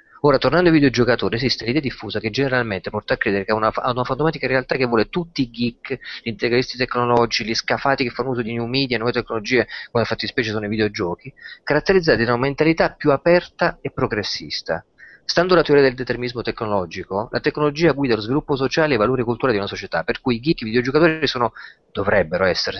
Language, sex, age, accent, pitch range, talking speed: Italian, male, 30-49, native, 115-145 Hz, 210 wpm